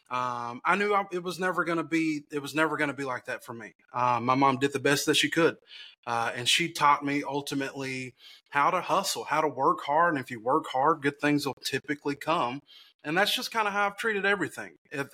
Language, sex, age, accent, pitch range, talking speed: English, male, 30-49, American, 130-180 Hz, 245 wpm